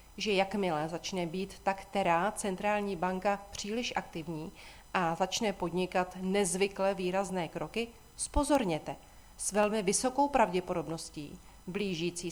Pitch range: 180-225 Hz